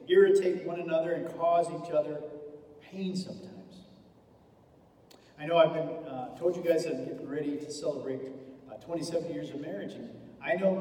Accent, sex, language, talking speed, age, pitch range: American, male, English, 160 wpm, 50-69, 135-180 Hz